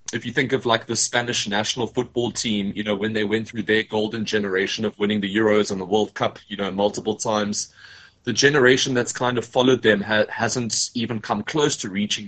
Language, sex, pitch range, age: English, male, 105-125 Hz, 20-39